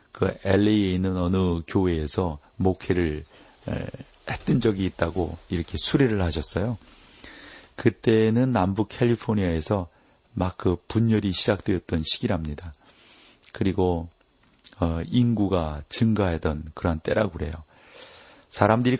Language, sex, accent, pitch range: Korean, male, native, 85-105 Hz